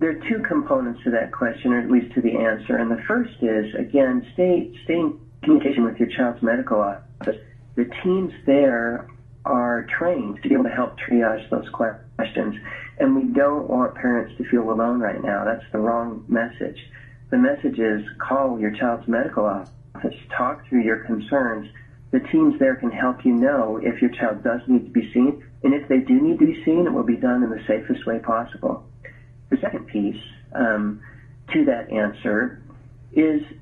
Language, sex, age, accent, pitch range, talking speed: English, male, 40-59, American, 120-200 Hz, 190 wpm